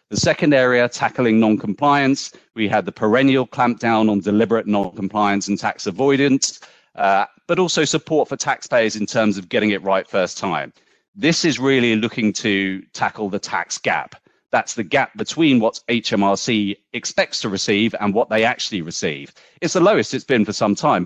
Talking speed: 175 wpm